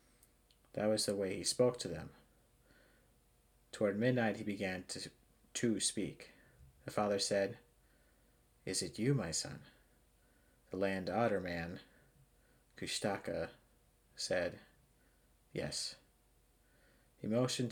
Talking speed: 110 wpm